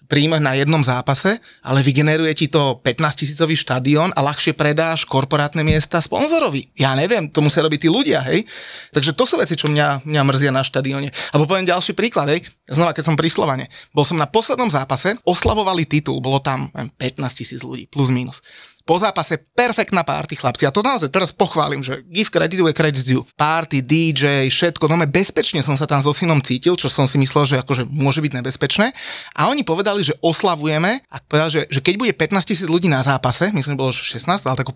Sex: male